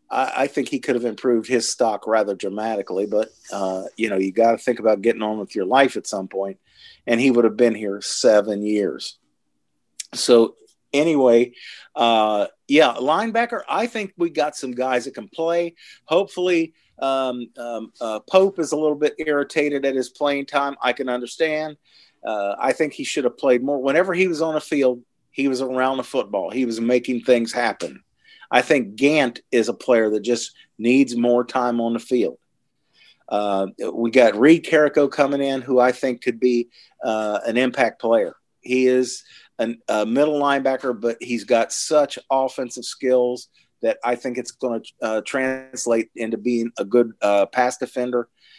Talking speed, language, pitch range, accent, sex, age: 180 wpm, English, 115-140 Hz, American, male, 40-59